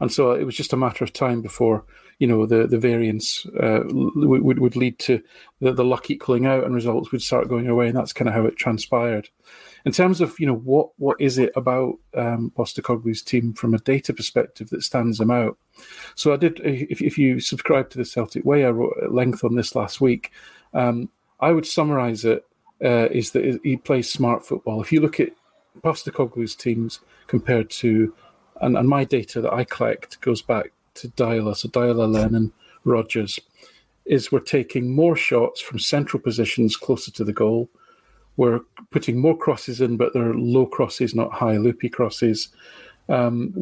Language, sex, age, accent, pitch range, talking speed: English, male, 40-59, British, 115-135 Hz, 190 wpm